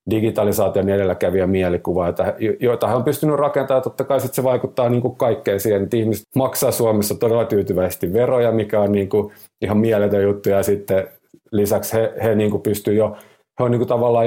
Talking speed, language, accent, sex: 135 wpm, Finnish, native, male